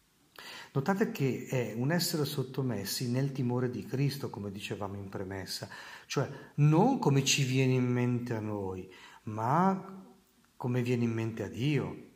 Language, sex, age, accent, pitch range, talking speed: Italian, male, 50-69, native, 110-145 Hz, 150 wpm